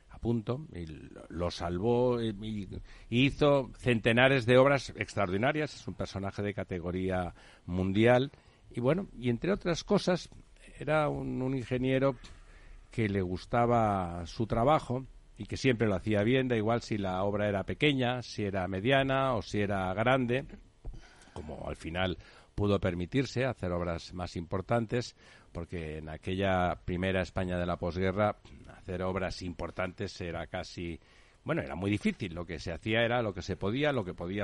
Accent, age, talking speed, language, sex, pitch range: Spanish, 60-79, 155 wpm, Spanish, male, 90-125 Hz